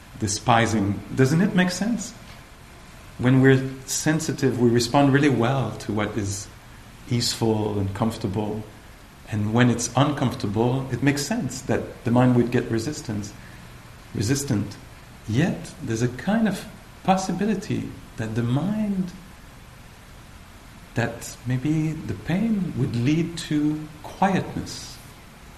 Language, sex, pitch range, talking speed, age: English, male, 115-140 Hz, 115 wpm, 50-69